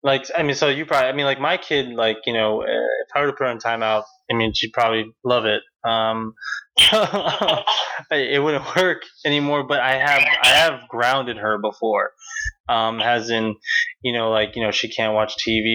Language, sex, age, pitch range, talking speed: English, male, 20-39, 110-140 Hz, 200 wpm